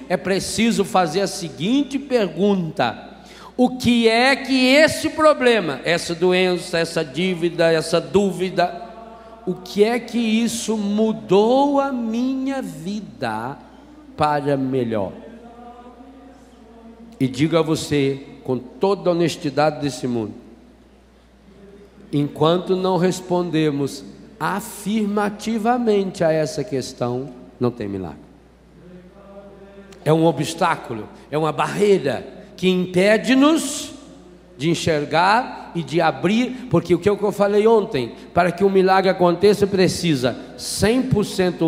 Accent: Brazilian